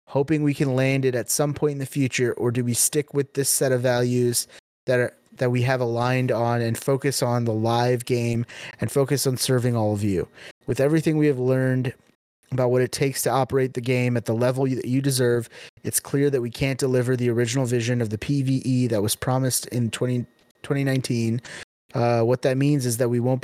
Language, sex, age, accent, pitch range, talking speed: English, male, 30-49, American, 120-140 Hz, 220 wpm